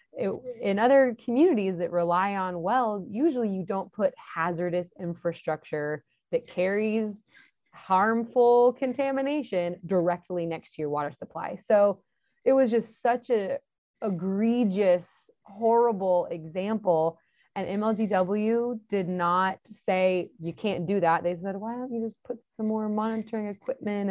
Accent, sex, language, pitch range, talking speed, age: American, female, English, 170-220 Hz, 130 wpm, 20-39